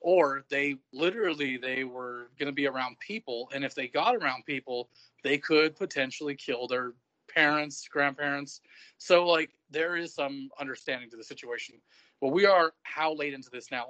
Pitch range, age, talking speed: 125-155 Hz, 30-49, 175 wpm